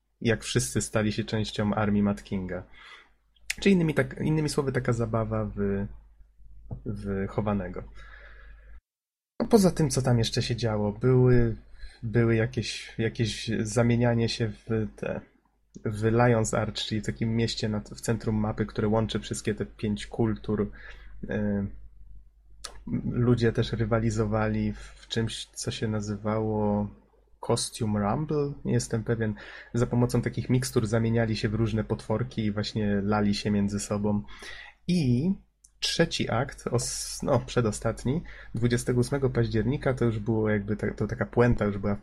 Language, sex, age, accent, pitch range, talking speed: Polish, male, 20-39, native, 105-120 Hz, 140 wpm